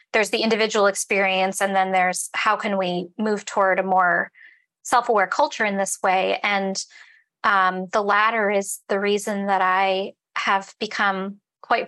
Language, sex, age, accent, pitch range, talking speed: English, female, 20-39, American, 195-225 Hz, 155 wpm